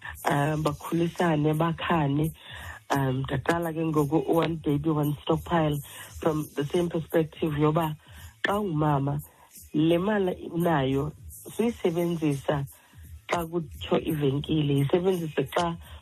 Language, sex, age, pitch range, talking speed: English, female, 40-59, 140-165 Hz, 95 wpm